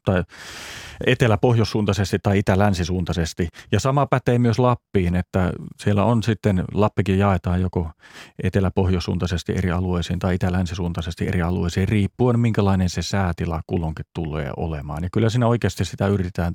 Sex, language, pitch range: male, Finnish, 90-105 Hz